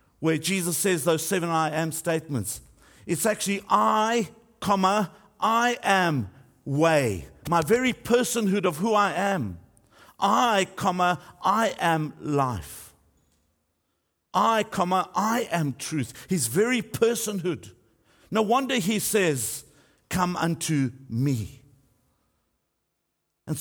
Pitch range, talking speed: 145-205 Hz, 100 wpm